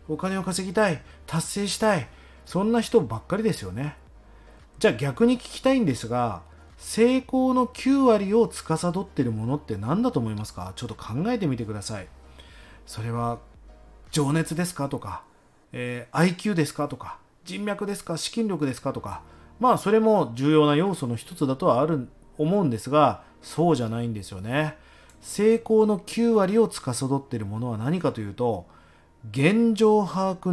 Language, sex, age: Japanese, male, 30-49